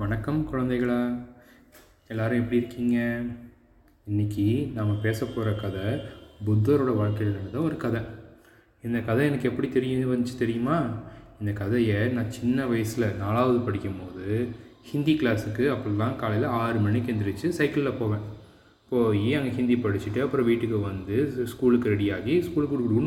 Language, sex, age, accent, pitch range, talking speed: Tamil, male, 20-39, native, 105-130 Hz, 120 wpm